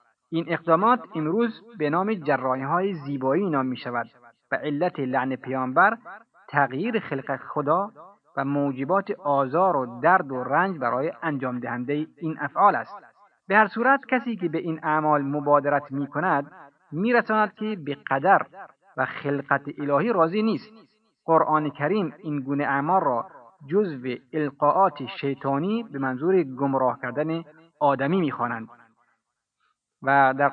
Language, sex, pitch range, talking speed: Persian, male, 135-175 Hz, 135 wpm